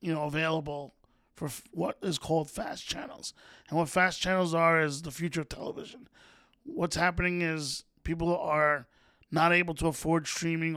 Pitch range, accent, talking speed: 155-175 Hz, American, 160 wpm